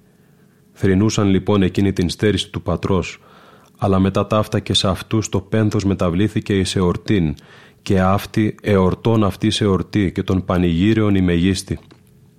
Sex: male